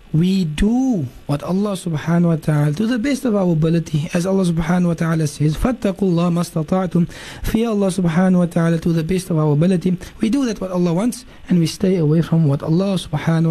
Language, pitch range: English, 160-190 Hz